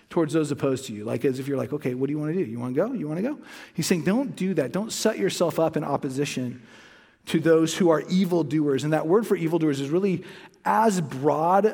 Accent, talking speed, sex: American, 255 wpm, male